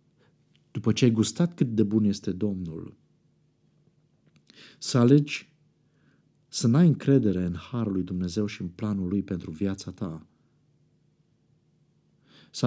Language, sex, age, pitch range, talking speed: Romanian, male, 50-69, 95-150 Hz, 125 wpm